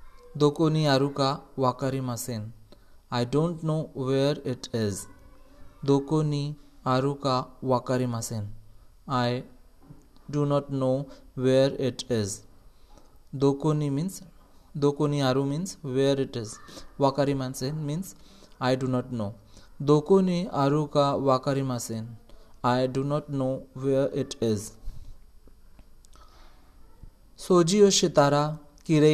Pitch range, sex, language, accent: 120-150 Hz, male, Japanese, Indian